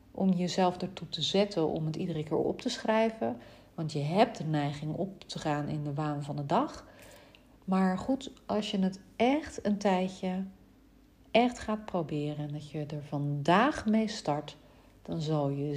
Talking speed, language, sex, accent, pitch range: 180 wpm, Dutch, female, Dutch, 150-200 Hz